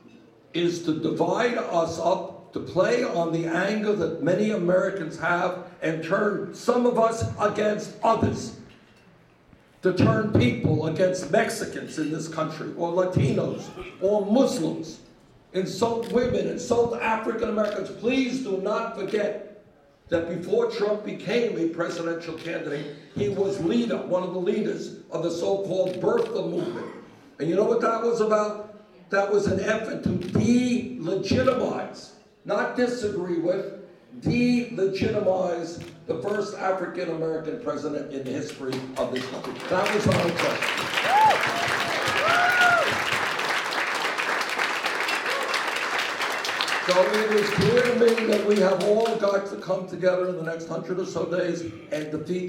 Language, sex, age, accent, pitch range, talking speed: English, male, 60-79, American, 170-215 Hz, 130 wpm